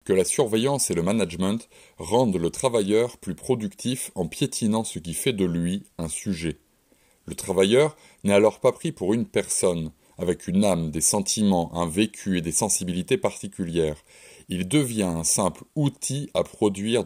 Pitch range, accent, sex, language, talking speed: 90-130 Hz, French, male, French, 165 wpm